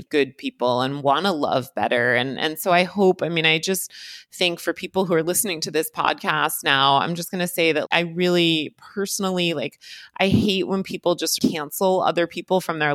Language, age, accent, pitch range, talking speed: English, 30-49, American, 140-180 Hz, 215 wpm